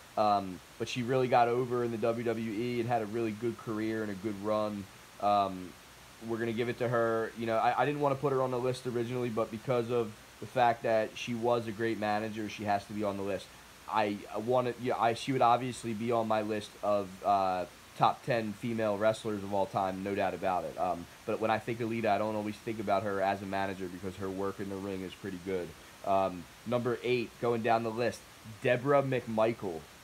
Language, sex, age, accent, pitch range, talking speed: English, male, 20-39, American, 105-120 Hz, 235 wpm